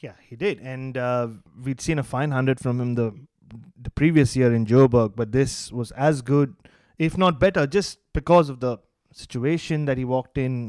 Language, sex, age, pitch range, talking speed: English, male, 20-39, 125-155 Hz, 195 wpm